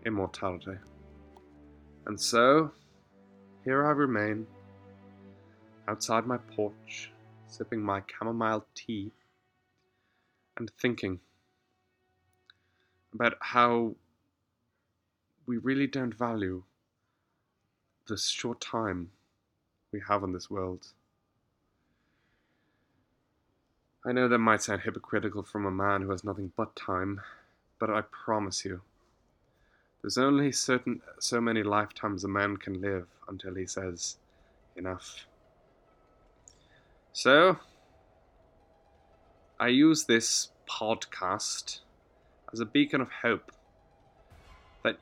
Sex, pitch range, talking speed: male, 95-115 Hz, 95 wpm